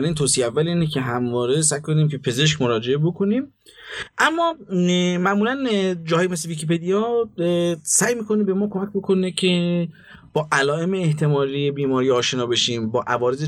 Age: 30-49